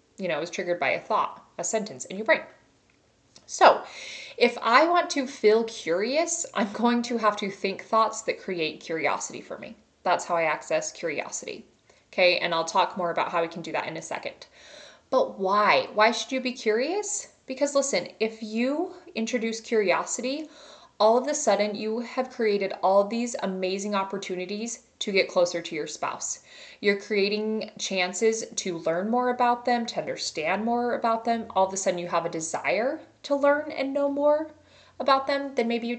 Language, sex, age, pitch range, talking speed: English, female, 20-39, 185-250 Hz, 185 wpm